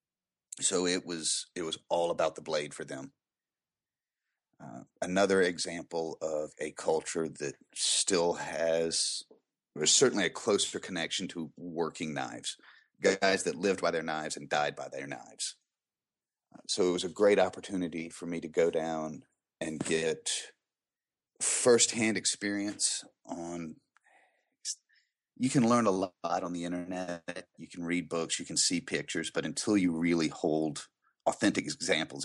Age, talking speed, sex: 30-49, 145 wpm, male